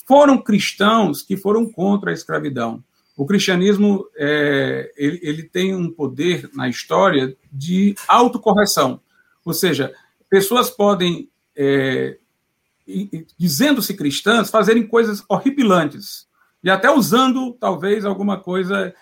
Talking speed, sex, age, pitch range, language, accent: 100 wpm, male, 50-69, 180-235 Hz, Portuguese, Brazilian